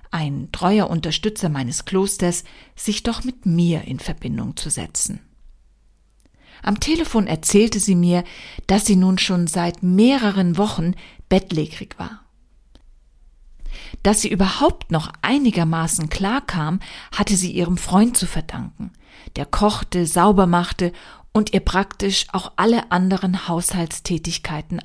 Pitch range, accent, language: 165-210 Hz, German, German